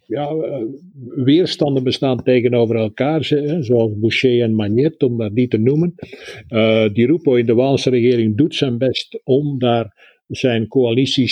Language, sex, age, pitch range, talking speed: Dutch, male, 50-69, 115-135 Hz, 145 wpm